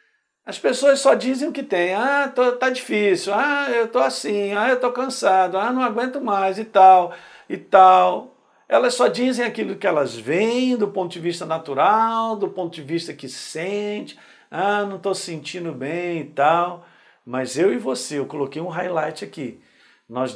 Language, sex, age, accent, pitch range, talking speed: Portuguese, male, 50-69, Brazilian, 140-200 Hz, 185 wpm